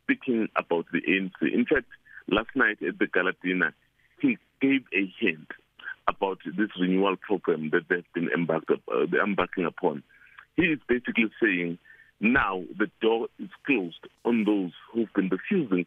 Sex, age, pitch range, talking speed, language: male, 50-69, 100-135 Hz, 155 wpm, English